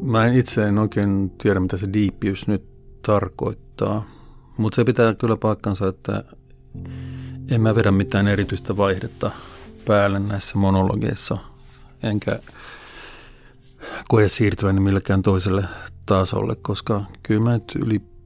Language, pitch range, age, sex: Finnish, 95-110 Hz, 50-69, male